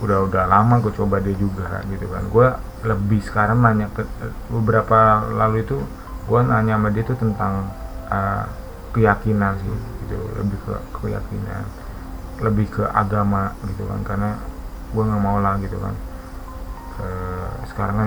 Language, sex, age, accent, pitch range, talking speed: Indonesian, male, 20-39, native, 90-110 Hz, 145 wpm